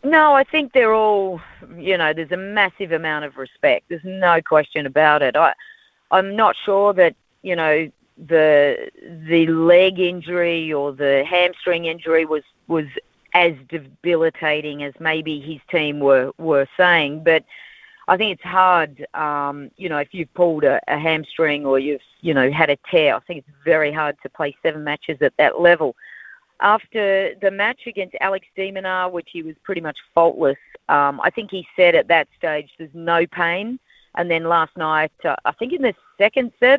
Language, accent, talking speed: English, Australian, 185 wpm